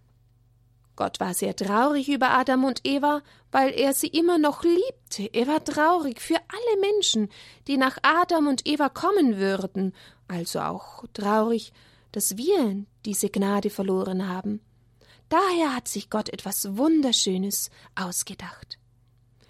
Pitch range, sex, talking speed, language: 185-290 Hz, female, 130 wpm, German